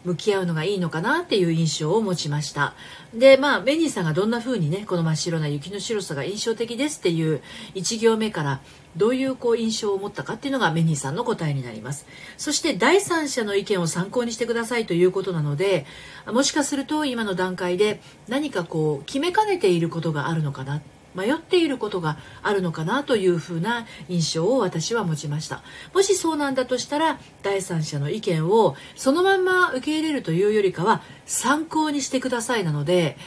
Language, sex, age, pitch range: Japanese, female, 40-59, 155-265 Hz